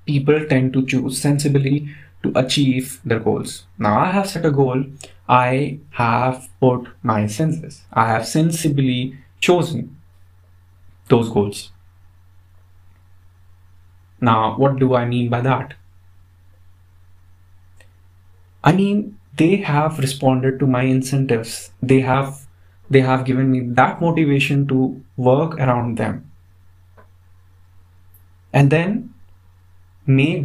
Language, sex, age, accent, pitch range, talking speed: English, male, 20-39, Indian, 90-140 Hz, 110 wpm